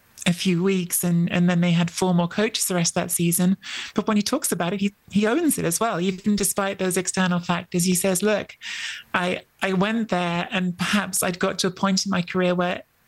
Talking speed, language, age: 235 wpm, English, 30-49